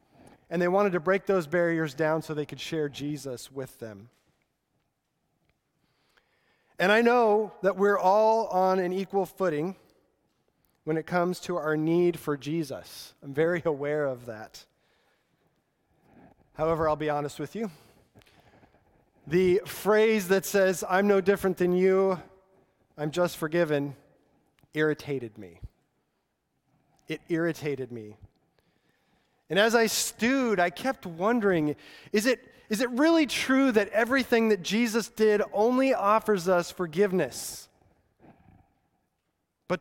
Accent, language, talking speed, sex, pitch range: American, English, 125 wpm, male, 150-210 Hz